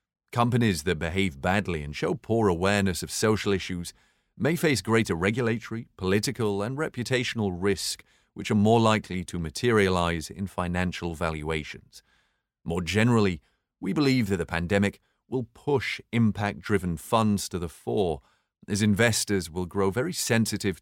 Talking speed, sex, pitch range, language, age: 140 wpm, male, 90-115 Hz, French, 30-49